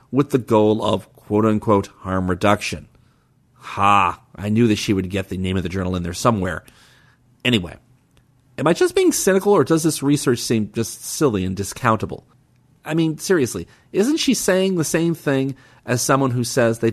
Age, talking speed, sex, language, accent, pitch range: 40-59, 180 wpm, male, English, American, 105-135 Hz